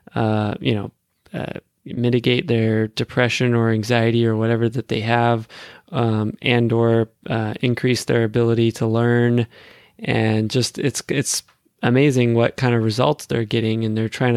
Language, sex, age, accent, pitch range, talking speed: English, male, 20-39, American, 110-125 Hz, 155 wpm